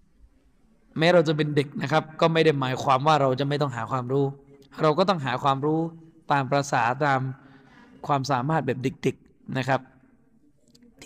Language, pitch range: Thai, 135-160 Hz